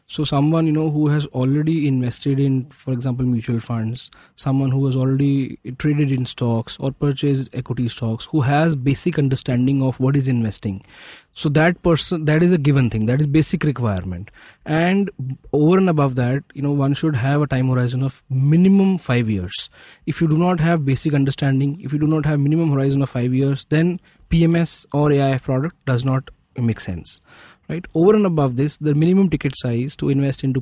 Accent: Indian